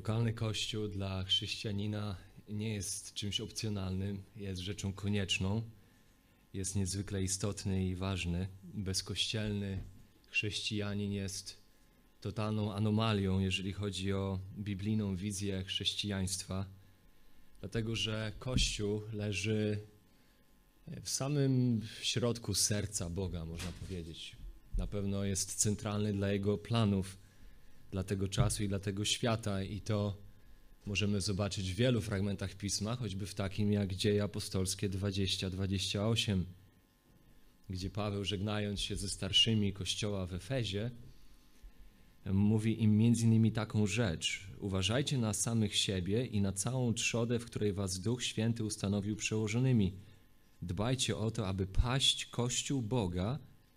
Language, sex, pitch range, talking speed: Polish, male, 95-110 Hz, 115 wpm